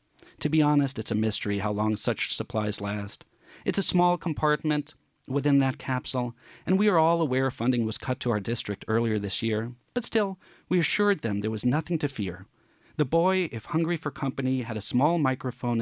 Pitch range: 110-155 Hz